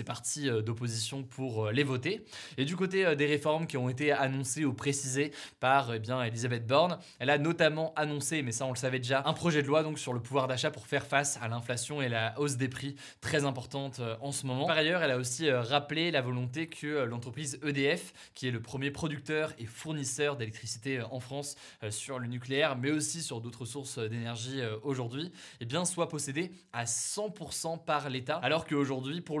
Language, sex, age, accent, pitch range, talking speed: French, male, 20-39, French, 125-160 Hz, 200 wpm